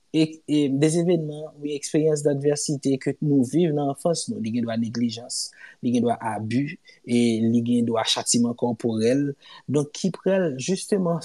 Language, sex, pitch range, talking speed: French, male, 125-160 Hz, 145 wpm